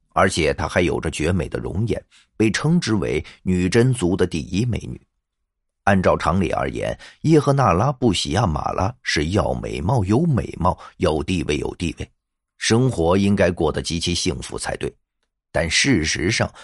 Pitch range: 85-125 Hz